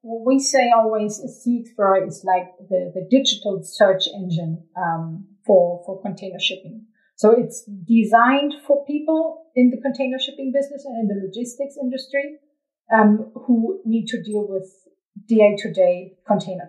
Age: 40-59